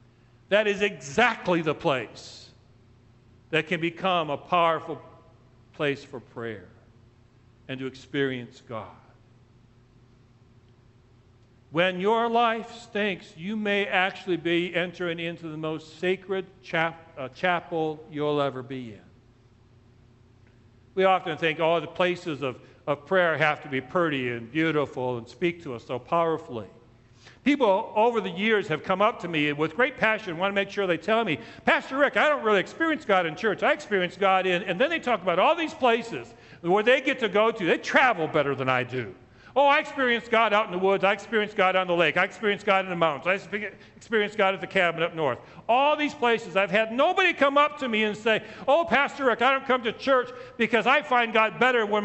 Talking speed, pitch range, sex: 185 wpm, 125-215 Hz, male